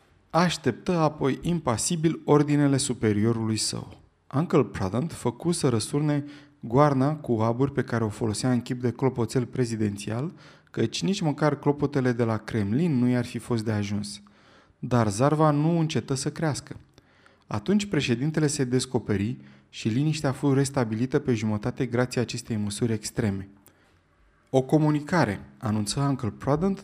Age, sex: 20-39, male